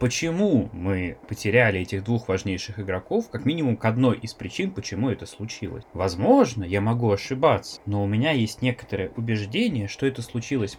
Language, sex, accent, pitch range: Russian, male, native, 100-125 Hz